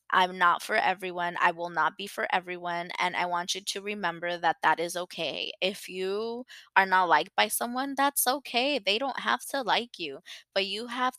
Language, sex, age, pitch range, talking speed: English, female, 20-39, 175-215 Hz, 205 wpm